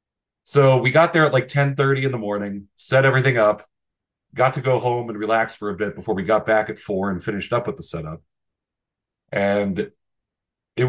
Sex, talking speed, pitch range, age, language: male, 200 wpm, 105-135 Hz, 30-49, English